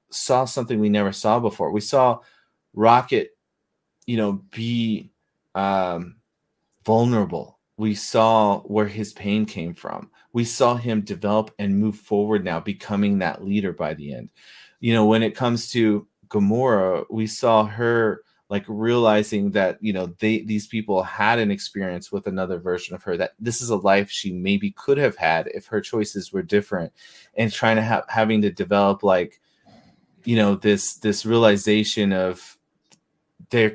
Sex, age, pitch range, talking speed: male, 30-49, 100-120 Hz, 160 wpm